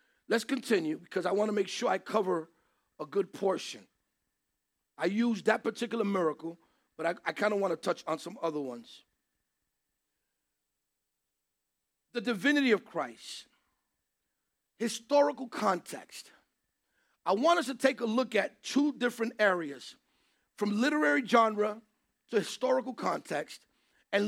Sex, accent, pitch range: male, American, 185-275 Hz